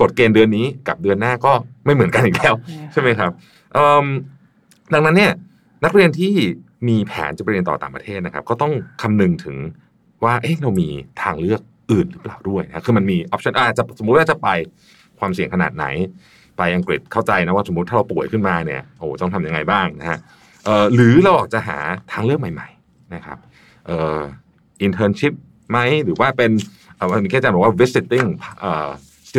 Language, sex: Thai, male